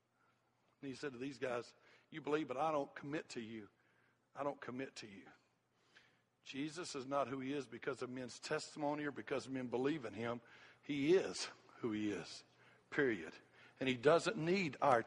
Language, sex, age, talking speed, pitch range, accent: English, male, 60-79, 185 wpm, 120-145 Hz, American